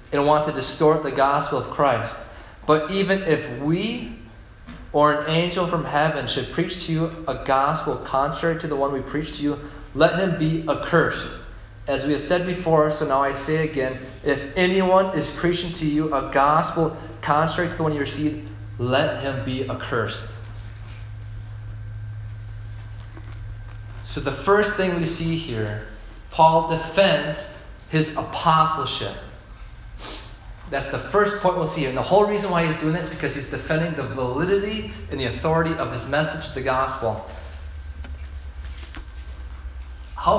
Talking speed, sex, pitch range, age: 155 wpm, male, 110-165 Hz, 30-49